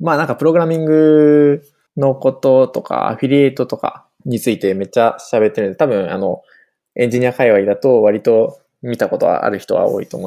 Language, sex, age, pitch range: Japanese, male, 20-39, 105-140 Hz